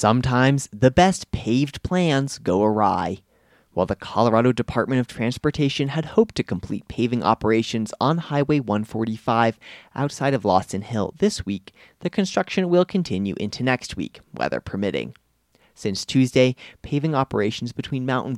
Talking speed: 140 wpm